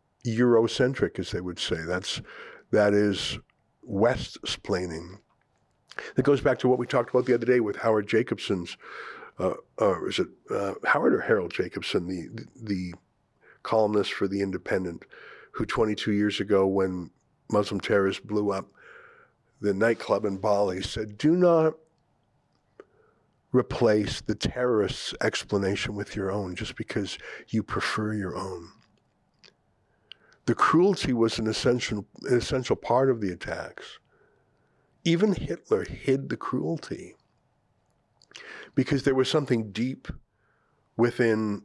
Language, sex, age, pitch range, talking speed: English, male, 50-69, 100-125 Hz, 130 wpm